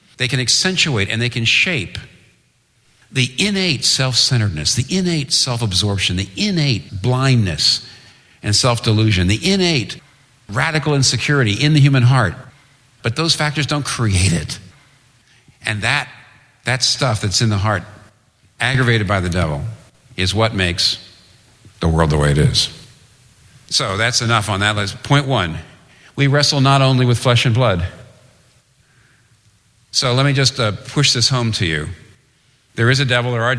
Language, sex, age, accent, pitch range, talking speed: English, male, 60-79, American, 100-130 Hz, 150 wpm